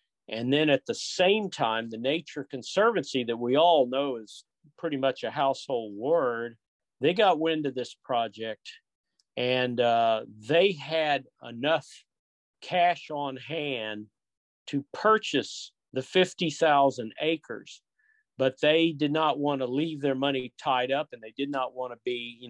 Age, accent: 50-69, American